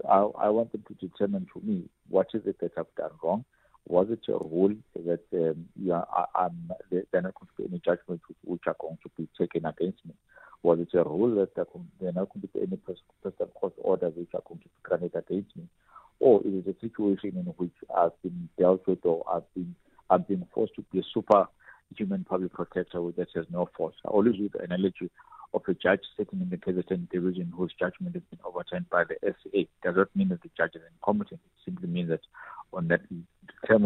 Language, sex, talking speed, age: English, male, 225 wpm, 50-69